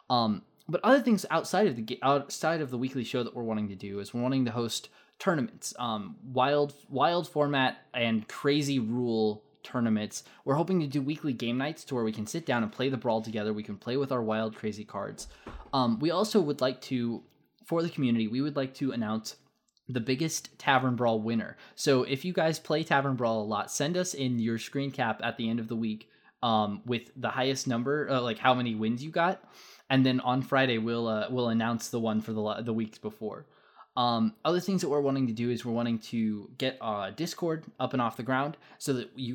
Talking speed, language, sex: 225 wpm, English, male